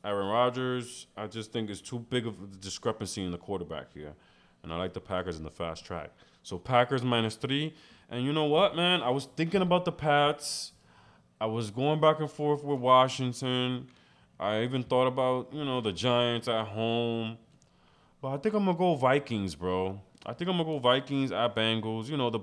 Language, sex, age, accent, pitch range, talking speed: English, male, 20-39, American, 105-150 Hz, 210 wpm